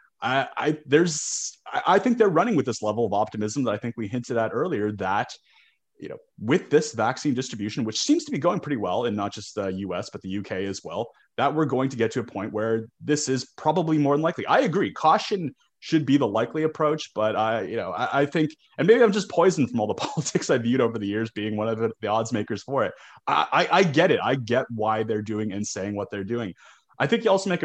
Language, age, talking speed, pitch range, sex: English, 30-49, 255 wpm, 105-145 Hz, male